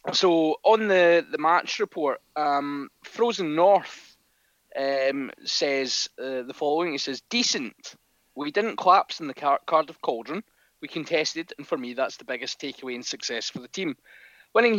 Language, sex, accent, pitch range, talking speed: English, male, British, 135-190 Hz, 160 wpm